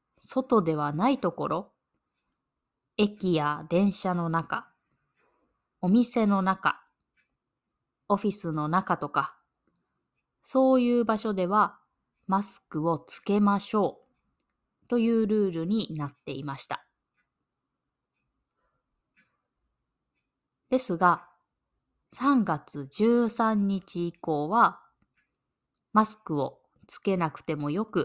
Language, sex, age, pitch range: Japanese, female, 20-39, 170-230 Hz